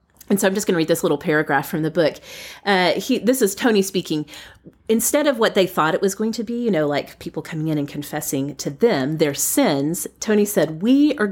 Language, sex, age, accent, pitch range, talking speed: English, female, 30-49, American, 150-210 Hz, 235 wpm